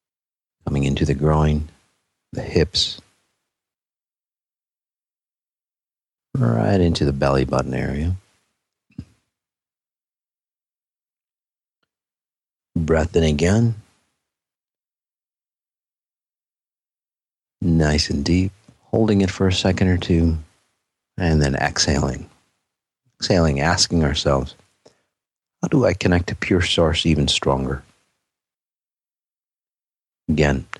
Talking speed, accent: 80 wpm, American